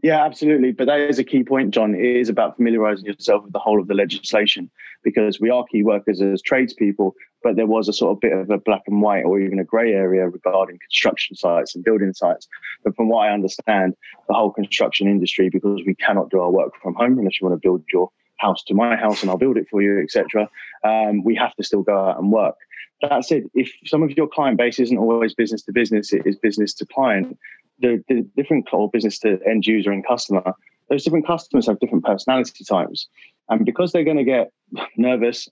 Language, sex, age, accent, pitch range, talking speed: English, male, 20-39, British, 100-120 Hz, 230 wpm